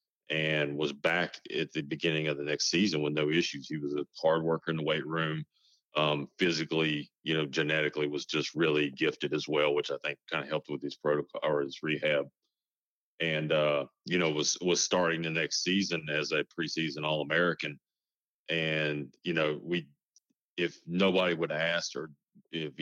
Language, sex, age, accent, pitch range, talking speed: English, male, 40-59, American, 75-85 Hz, 185 wpm